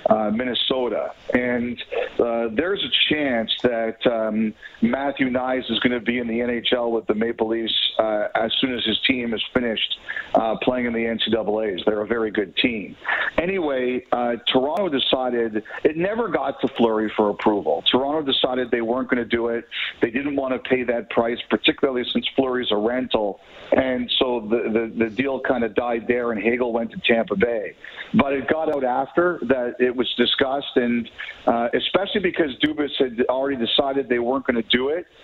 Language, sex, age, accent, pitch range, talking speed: English, male, 50-69, American, 120-140 Hz, 185 wpm